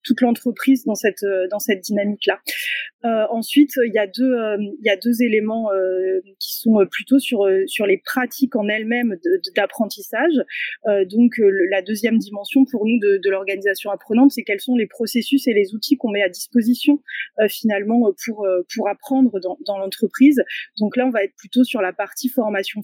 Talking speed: 195 wpm